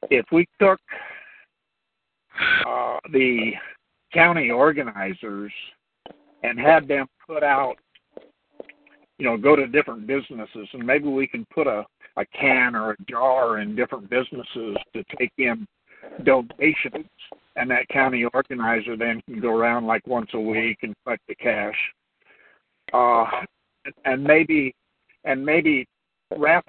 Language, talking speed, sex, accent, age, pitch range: English, 130 wpm, male, American, 60-79, 120-150 Hz